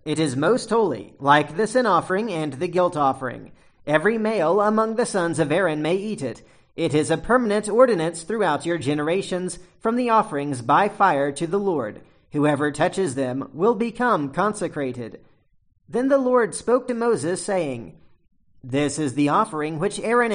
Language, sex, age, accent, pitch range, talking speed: English, male, 40-59, American, 150-210 Hz, 170 wpm